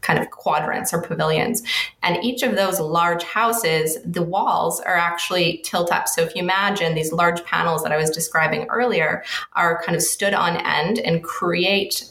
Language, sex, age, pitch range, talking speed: English, female, 20-39, 160-190 Hz, 185 wpm